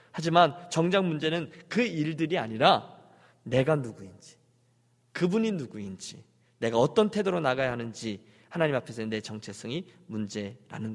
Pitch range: 115-165 Hz